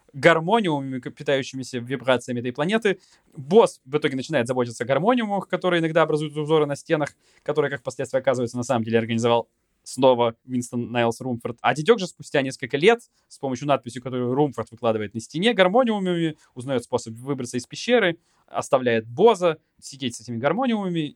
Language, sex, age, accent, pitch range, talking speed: Russian, male, 20-39, native, 115-165 Hz, 160 wpm